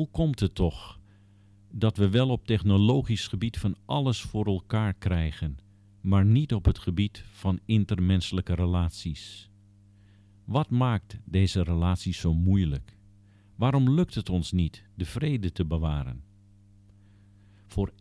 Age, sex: 50-69, male